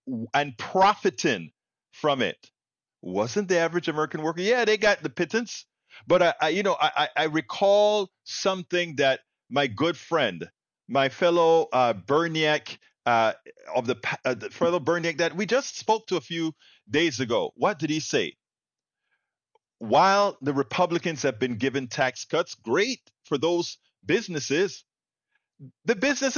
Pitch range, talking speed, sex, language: 130-185 Hz, 150 wpm, male, English